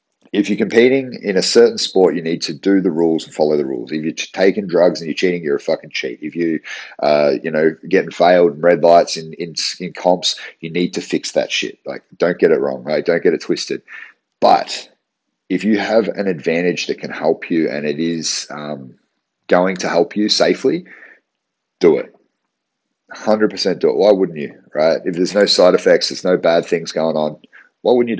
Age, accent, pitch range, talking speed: 40-59, Australian, 80-100 Hz, 215 wpm